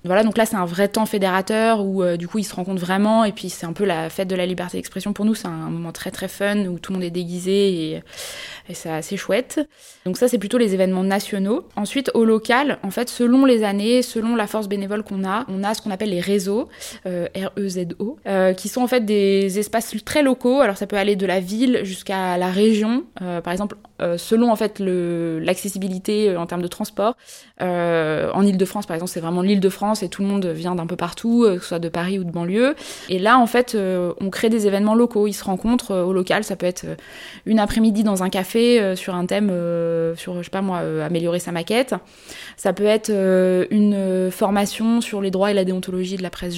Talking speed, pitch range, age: 245 wpm, 185-220 Hz, 20-39